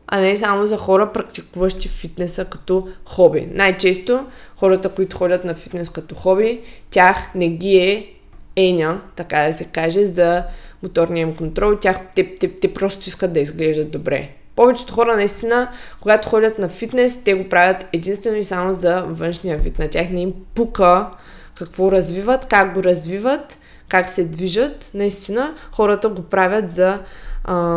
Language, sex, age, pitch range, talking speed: Bulgarian, female, 20-39, 180-230 Hz, 155 wpm